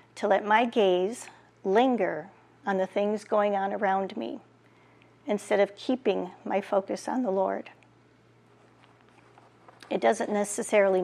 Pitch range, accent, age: 185-215 Hz, American, 40-59